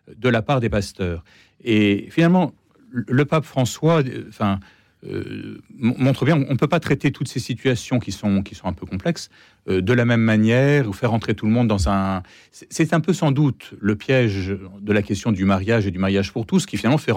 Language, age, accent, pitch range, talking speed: French, 40-59, French, 100-140 Hz, 215 wpm